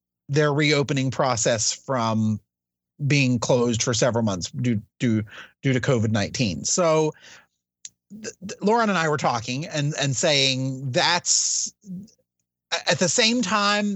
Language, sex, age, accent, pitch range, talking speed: English, male, 30-49, American, 130-175 Hz, 120 wpm